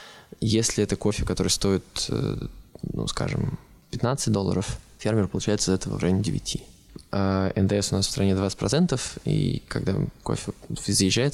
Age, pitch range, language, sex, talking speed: 20-39, 100-115 Hz, Russian, male, 145 wpm